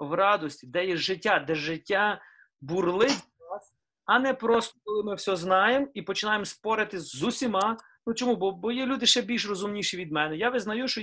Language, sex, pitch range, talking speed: Ukrainian, male, 160-225 Hz, 185 wpm